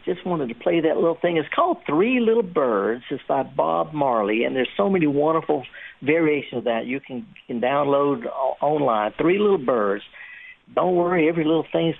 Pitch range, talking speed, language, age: 155-205 Hz, 190 wpm, English, 60-79